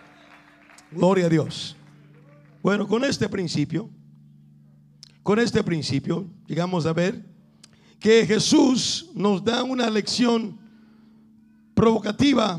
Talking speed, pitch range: 95 wpm, 165-235 Hz